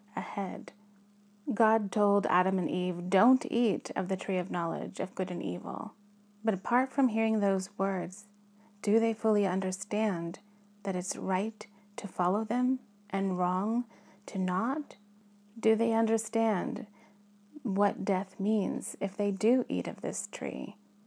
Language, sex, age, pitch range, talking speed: English, female, 30-49, 190-215 Hz, 140 wpm